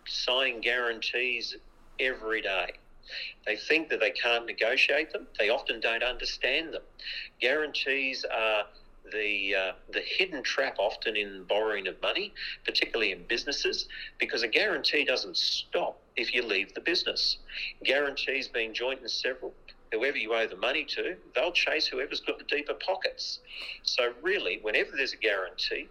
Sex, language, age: male, English, 50-69